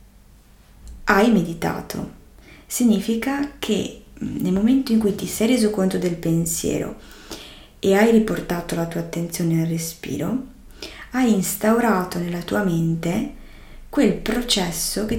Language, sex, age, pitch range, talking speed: Italian, female, 30-49, 170-225 Hz, 120 wpm